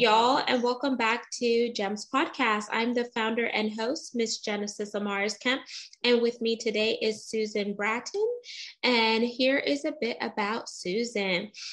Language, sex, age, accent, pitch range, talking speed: English, female, 20-39, American, 215-275 Hz, 155 wpm